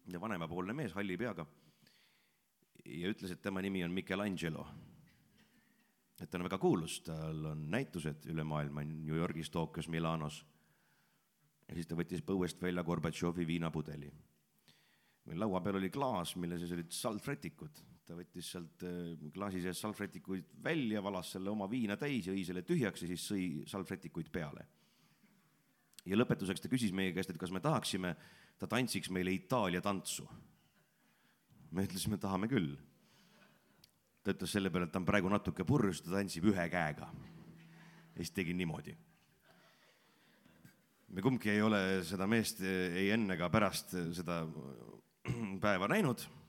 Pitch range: 80-95 Hz